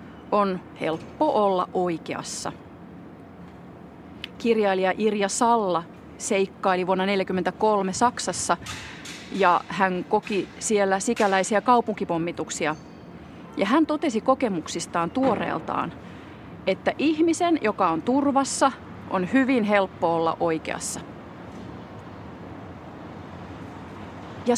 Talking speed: 80 wpm